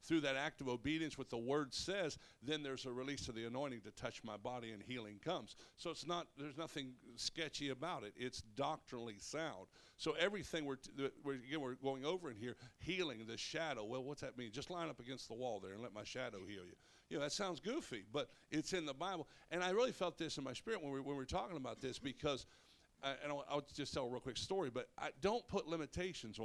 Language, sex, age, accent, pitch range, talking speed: English, male, 60-79, American, 125-160 Hz, 245 wpm